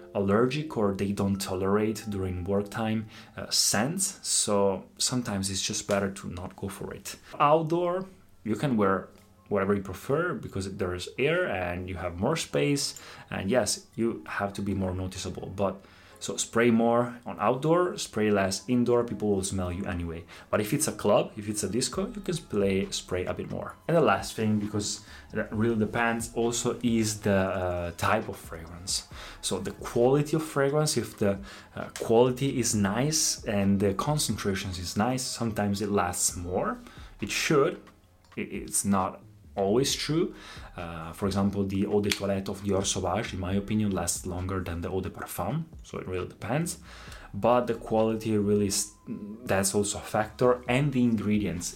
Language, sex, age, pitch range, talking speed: Italian, male, 20-39, 95-120 Hz, 175 wpm